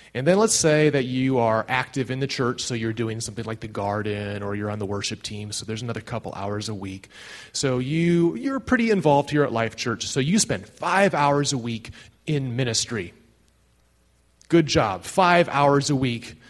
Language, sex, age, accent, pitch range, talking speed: English, male, 30-49, American, 105-150 Hz, 200 wpm